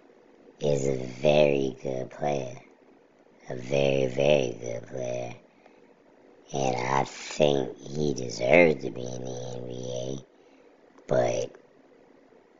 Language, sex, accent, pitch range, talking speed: English, male, American, 65-75 Hz, 100 wpm